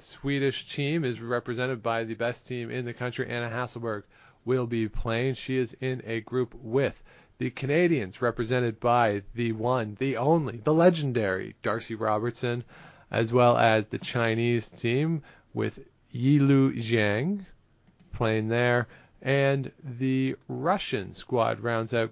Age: 40-59